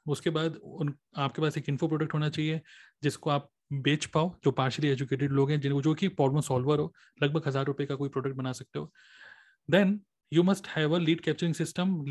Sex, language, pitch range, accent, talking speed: male, Hindi, 145-175 Hz, native, 180 wpm